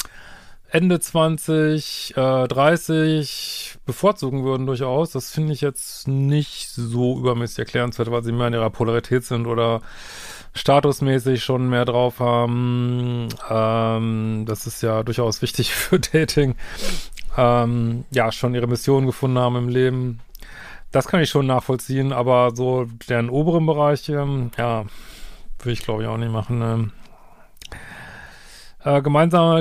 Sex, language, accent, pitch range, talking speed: male, German, German, 120-140 Hz, 135 wpm